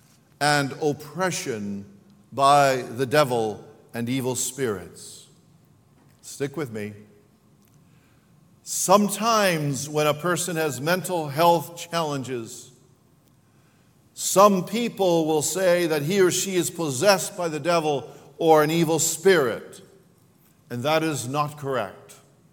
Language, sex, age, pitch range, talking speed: English, male, 50-69, 130-170 Hz, 110 wpm